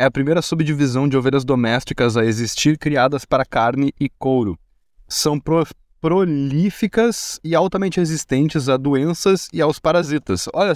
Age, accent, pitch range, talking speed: 20-39, Brazilian, 115-145 Hz, 145 wpm